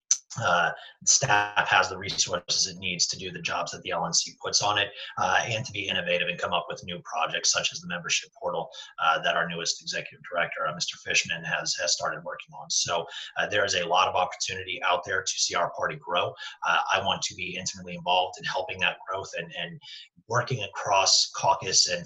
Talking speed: 215 wpm